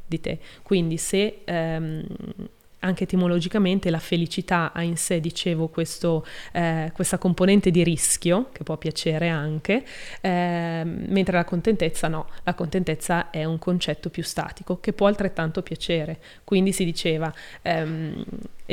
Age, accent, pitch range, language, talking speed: 20-39, native, 165-200 Hz, Italian, 140 wpm